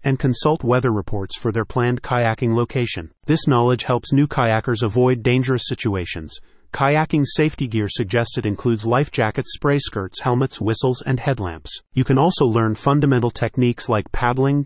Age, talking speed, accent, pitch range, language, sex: 30-49, 155 wpm, American, 110-135 Hz, English, male